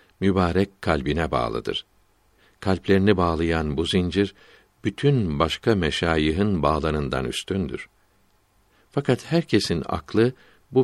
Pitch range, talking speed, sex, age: 80-100 Hz, 90 wpm, male, 60-79